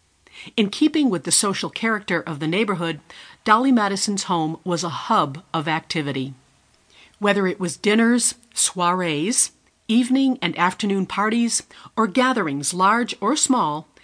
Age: 50-69